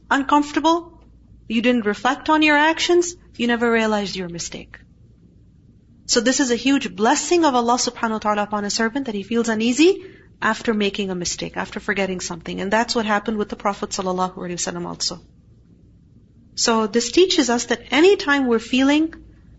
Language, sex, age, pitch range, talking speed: English, female, 40-59, 205-275 Hz, 165 wpm